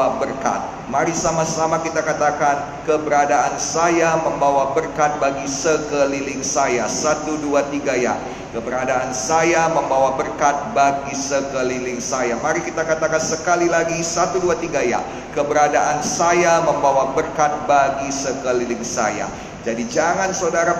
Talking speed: 120 wpm